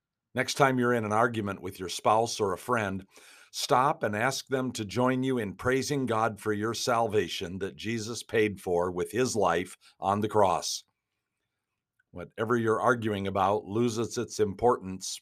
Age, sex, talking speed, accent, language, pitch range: 50-69, male, 165 wpm, American, English, 100-120 Hz